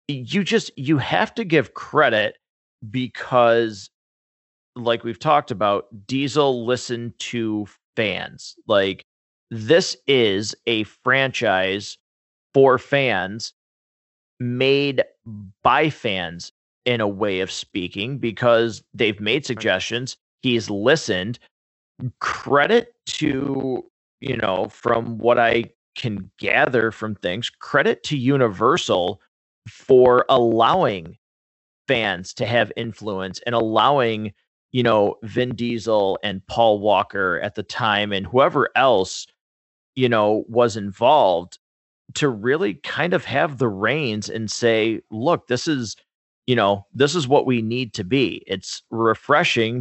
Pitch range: 105-125 Hz